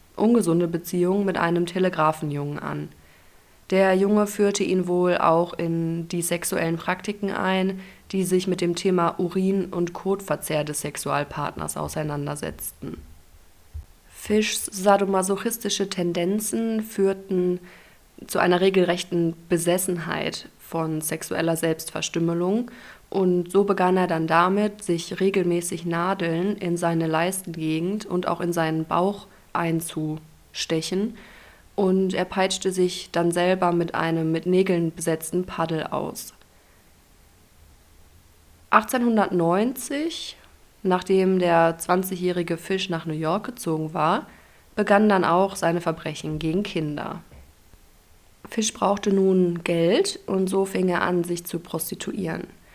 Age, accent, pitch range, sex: 20-39, German, 165-195 Hz, female